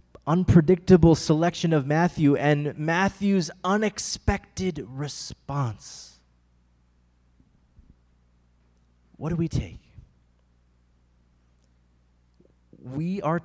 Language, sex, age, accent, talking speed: English, male, 20-39, American, 60 wpm